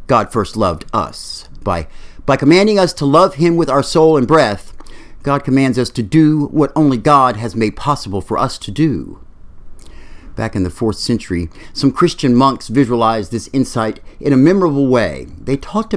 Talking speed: 180 wpm